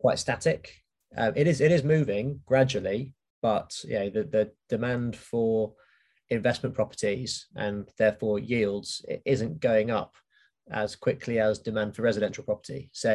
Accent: British